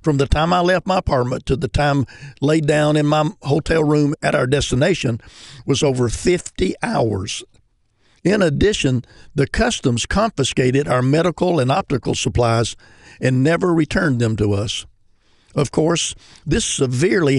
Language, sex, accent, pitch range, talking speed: English, male, American, 130-160 Hz, 150 wpm